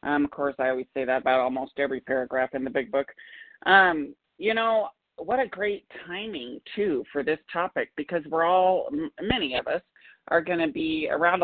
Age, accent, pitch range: 40-59, American, 145-190 Hz